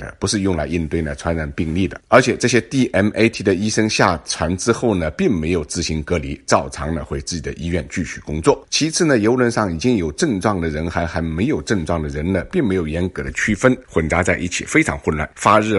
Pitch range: 80-95 Hz